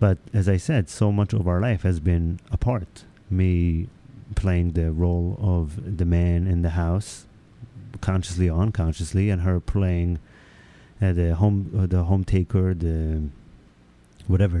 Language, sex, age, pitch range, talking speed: English, male, 30-49, 90-110 Hz, 150 wpm